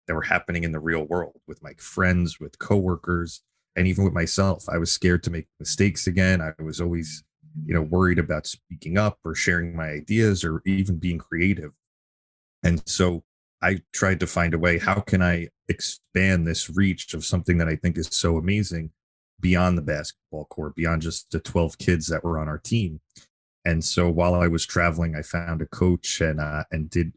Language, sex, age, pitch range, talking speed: English, male, 30-49, 80-95 Hz, 195 wpm